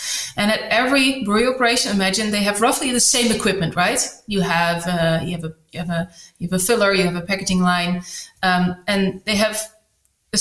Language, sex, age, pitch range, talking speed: English, female, 20-39, 180-220 Hz, 210 wpm